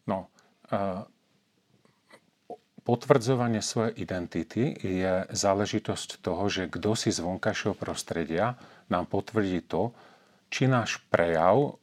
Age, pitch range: 40-59, 90-110 Hz